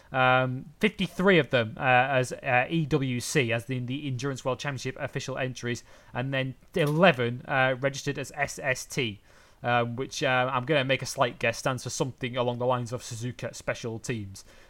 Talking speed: 180 wpm